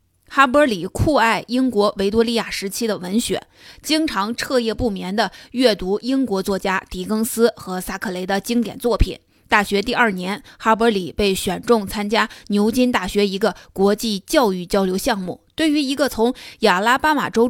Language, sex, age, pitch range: Chinese, female, 20-39, 195-245 Hz